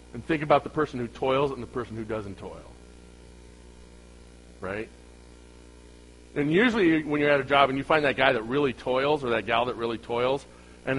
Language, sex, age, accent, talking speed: English, male, 40-59, American, 195 wpm